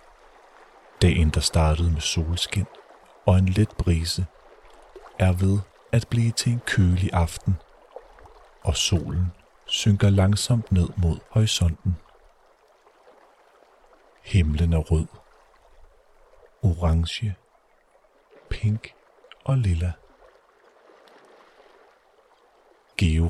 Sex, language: male, Danish